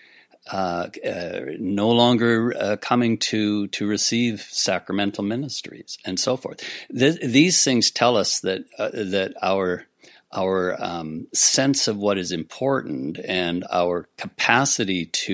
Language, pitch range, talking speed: English, 90-115 Hz, 135 wpm